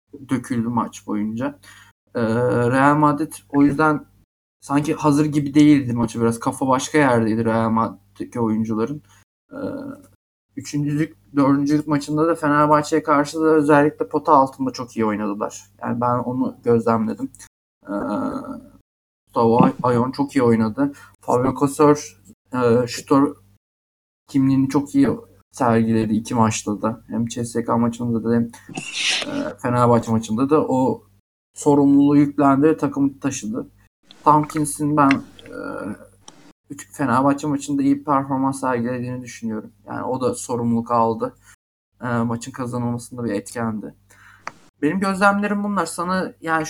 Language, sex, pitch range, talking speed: Turkish, male, 115-150 Hz, 120 wpm